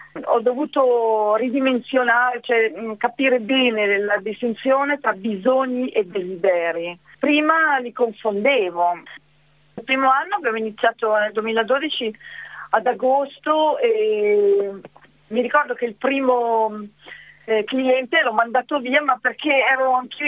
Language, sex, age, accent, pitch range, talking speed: Italian, female, 40-59, native, 215-275 Hz, 115 wpm